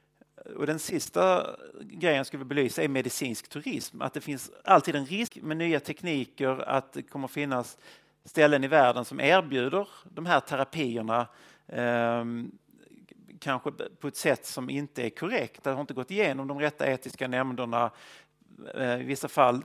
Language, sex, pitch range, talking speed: English, male, 130-165 Hz, 155 wpm